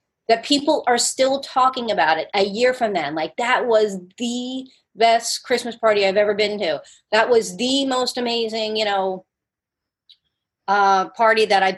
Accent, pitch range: American, 190-245 Hz